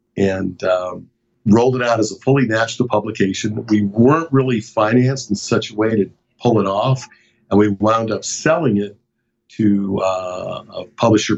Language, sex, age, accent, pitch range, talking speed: English, male, 50-69, American, 100-125 Hz, 170 wpm